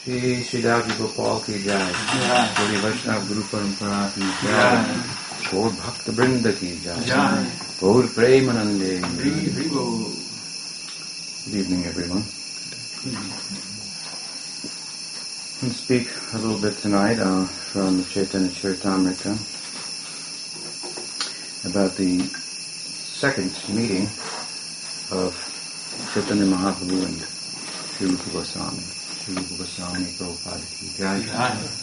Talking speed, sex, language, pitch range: 50 wpm, male, English, 90-105 Hz